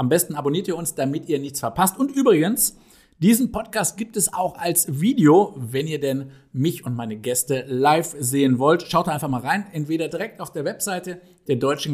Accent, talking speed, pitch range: German, 195 wpm, 135-180 Hz